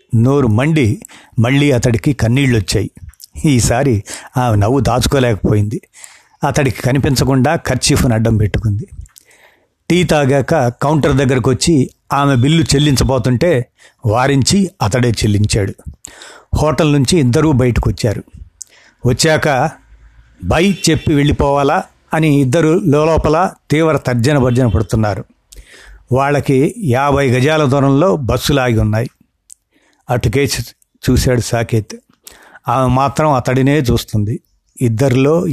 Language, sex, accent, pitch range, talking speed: Telugu, male, native, 115-145 Hz, 95 wpm